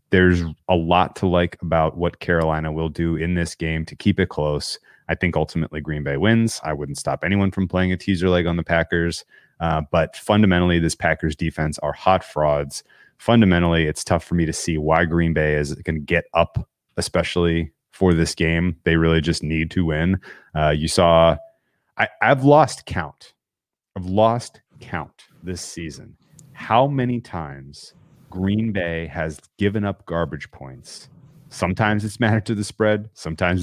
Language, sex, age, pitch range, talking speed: English, male, 30-49, 80-100 Hz, 175 wpm